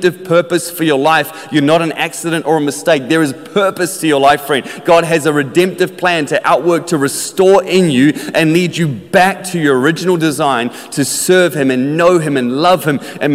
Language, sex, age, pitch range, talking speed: English, male, 30-49, 145-175 Hz, 210 wpm